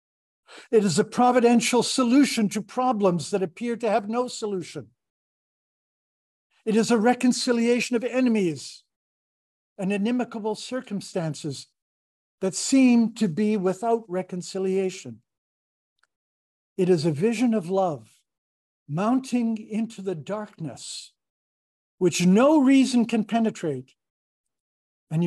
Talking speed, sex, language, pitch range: 105 wpm, male, English, 140-210 Hz